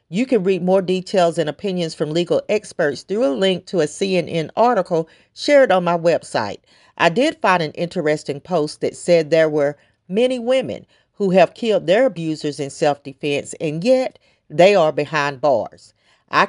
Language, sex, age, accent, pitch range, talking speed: English, female, 40-59, American, 160-205 Hz, 170 wpm